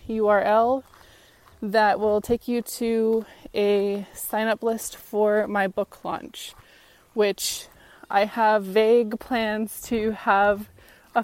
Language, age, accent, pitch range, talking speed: English, 20-39, American, 195-225 Hz, 115 wpm